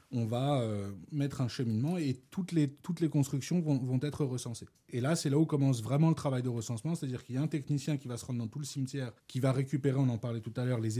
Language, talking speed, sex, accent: French, 275 wpm, male, French